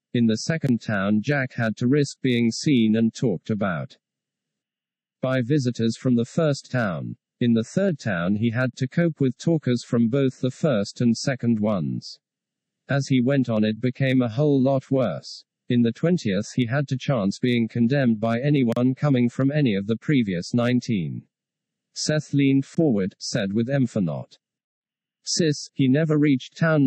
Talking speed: 170 wpm